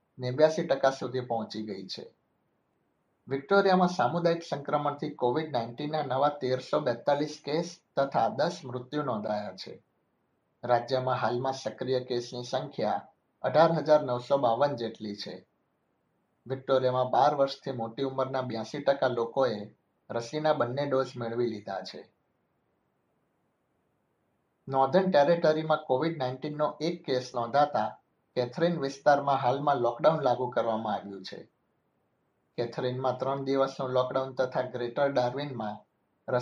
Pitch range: 120-145 Hz